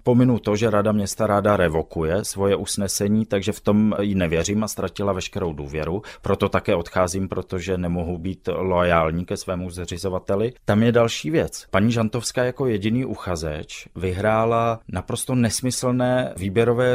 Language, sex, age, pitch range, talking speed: Czech, male, 30-49, 95-115 Hz, 145 wpm